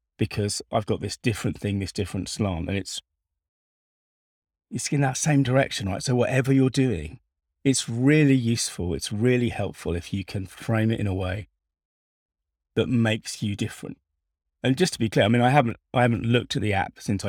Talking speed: 190 wpm